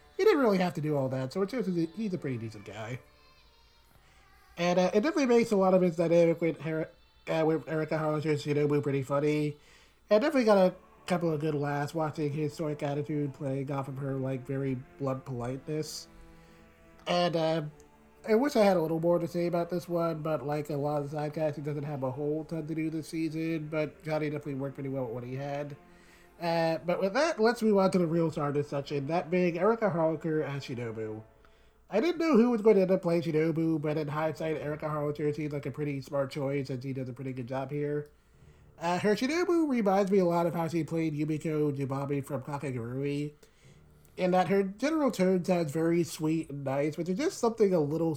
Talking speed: 220 wpm